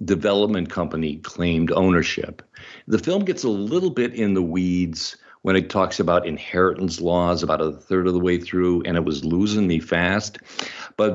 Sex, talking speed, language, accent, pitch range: male, 180 wpm, English, American, 80-95 Hz